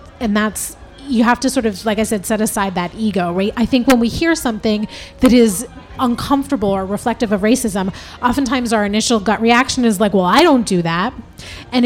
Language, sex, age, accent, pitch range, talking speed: English, female, 30-49, American, 190-230 Hz, 205 wpm